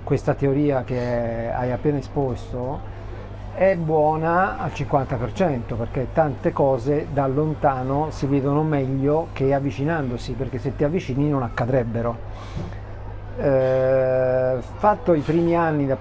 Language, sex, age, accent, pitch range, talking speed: Italian, male, 50-69, native, 120-145 Hz, 120 wpm